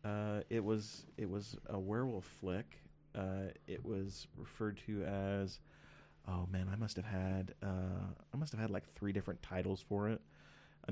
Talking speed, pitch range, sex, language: 175 wpm, 90-100 Hz, male, English